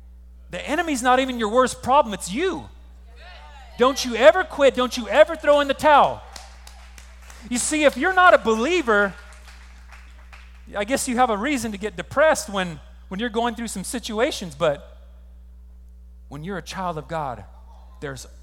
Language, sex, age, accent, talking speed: English, male, 40-59, American, 165 wpm